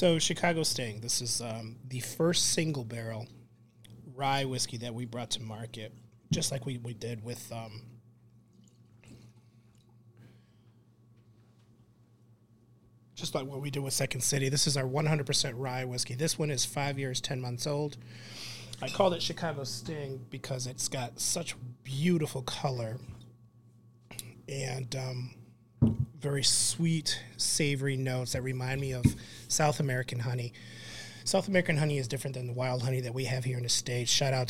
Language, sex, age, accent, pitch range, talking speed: English, male, 30-49, American, 115-140 Hz, 150 wpm